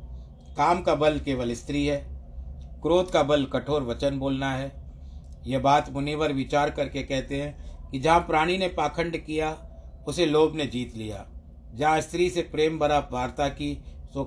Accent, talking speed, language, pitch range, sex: native, 165 wpm, Hindi, 100-150 Hz, male